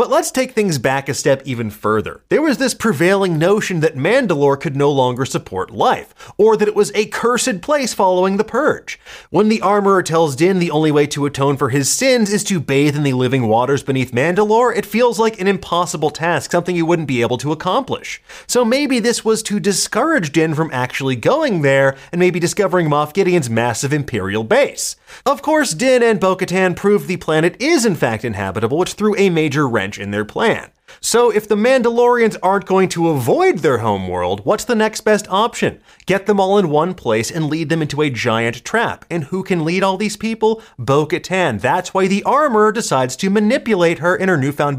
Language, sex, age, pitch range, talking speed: English, male, 30-49, 140-210 Hz, 205 wpm